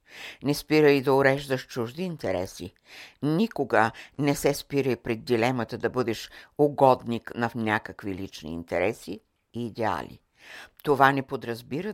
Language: Bulgarian